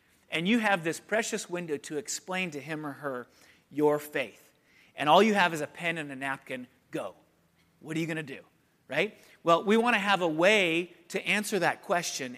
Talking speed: 210 wpm